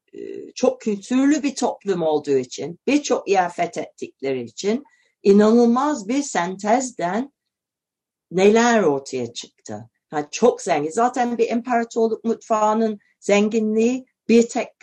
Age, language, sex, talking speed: 60-79, Turkish, female, 105 wpm